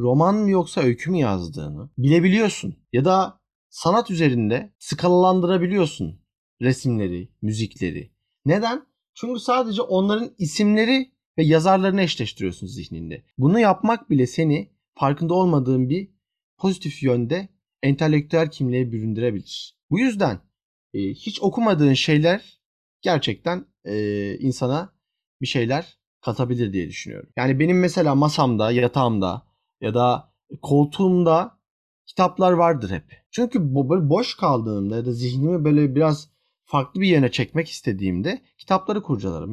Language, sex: Turkish, male